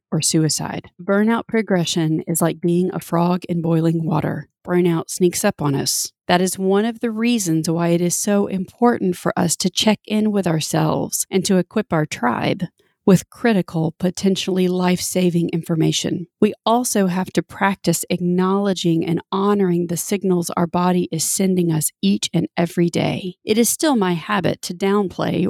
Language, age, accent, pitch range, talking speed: English, 40-59, American, 165-195 Hz, 165 wpm